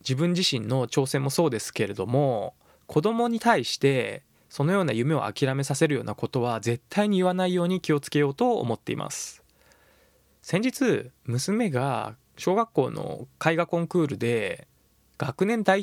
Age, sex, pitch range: 20-39, male, 125-180 Hz